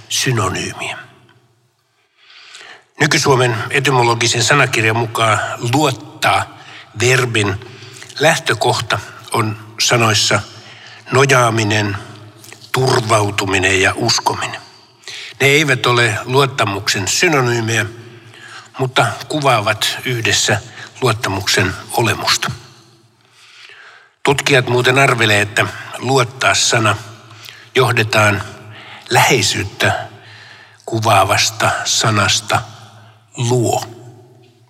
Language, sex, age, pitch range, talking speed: Finnish, male, 60-79, 110-125 Hz, 60 wpm